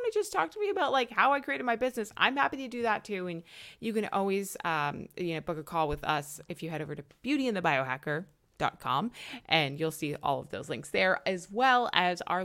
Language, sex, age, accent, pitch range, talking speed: English, female, 20-39, American, 150-205 Hz, 250 wpm